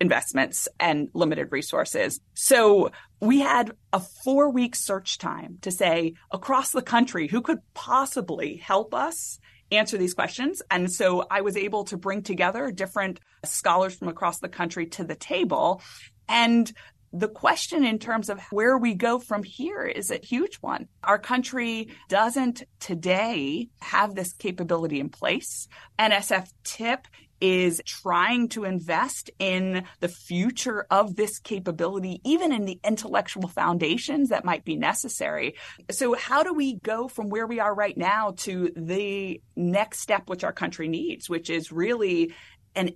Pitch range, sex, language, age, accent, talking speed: 185-240 Hz, female, English, 30-49, American, 150 wpm